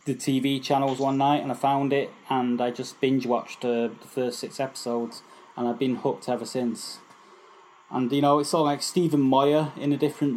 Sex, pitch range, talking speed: male, 120-140 Hz, 210 wpm